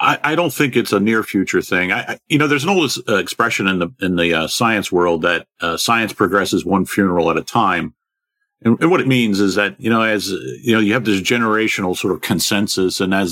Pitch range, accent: 90-115 Hz, American